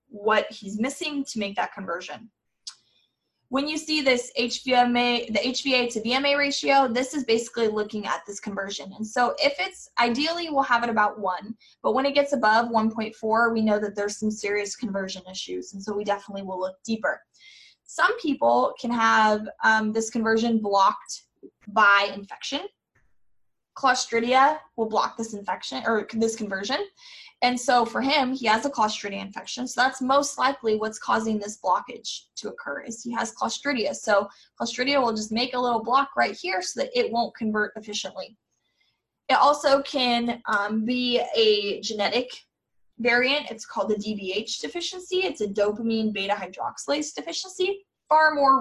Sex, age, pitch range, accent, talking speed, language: female, 20-39, 210-270 Hz, American, 165 wpm, English